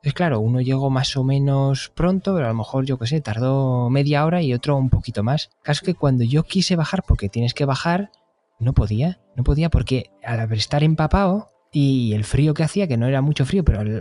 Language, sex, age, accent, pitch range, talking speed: Spanish, male, 20-39, Spanish, 120-165 Hz, 230 wpm